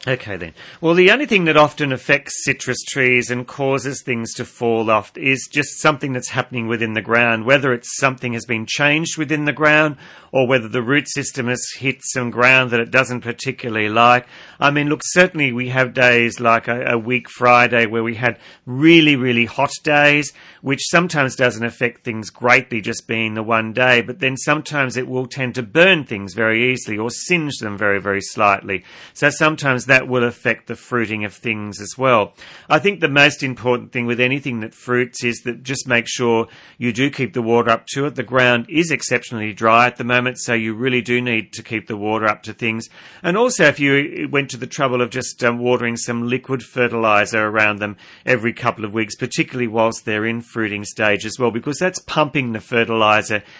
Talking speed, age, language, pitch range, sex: 205 wpm, 40-59, English, 115-135 Hz, male